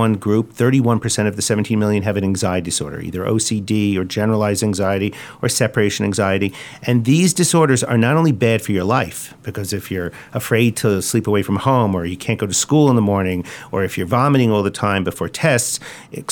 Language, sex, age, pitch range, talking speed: English, male, 50-69, 100-130 Hz, 205 wpm